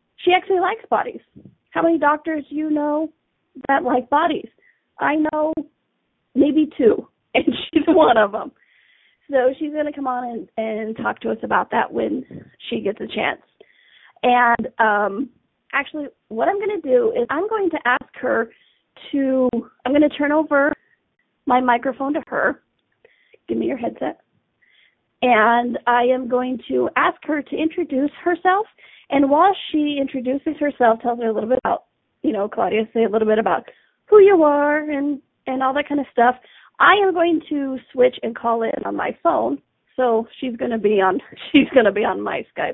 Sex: female